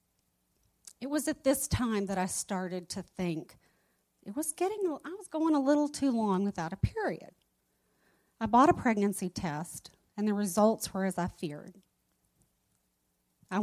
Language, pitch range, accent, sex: English, 160-220 Hz, American, female